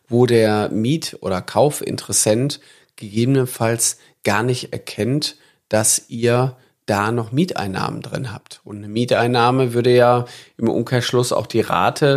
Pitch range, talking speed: 110-125 Hz, 130 wpm